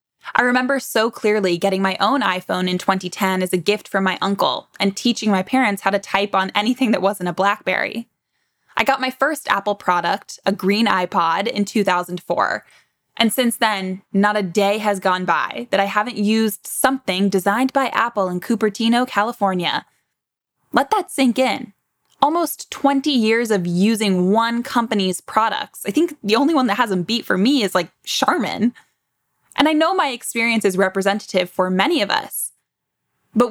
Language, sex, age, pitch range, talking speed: English, female, 10-29, 190-245 Hz, 175 wpm